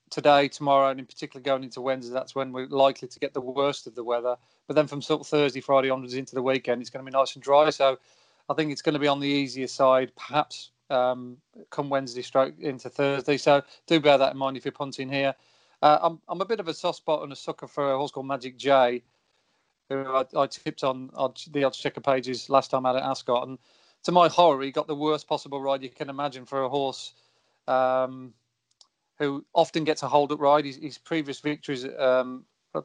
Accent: British